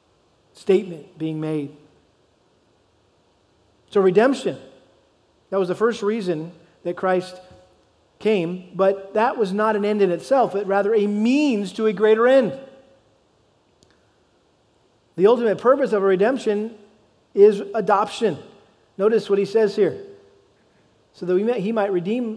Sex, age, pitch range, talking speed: male, 40-59, 180-215 Hz, 130 wpm